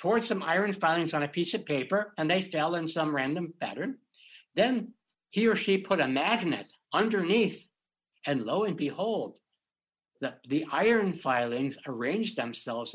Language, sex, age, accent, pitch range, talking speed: English, male, 60-79, American, 135-195 Hz, 160 wpm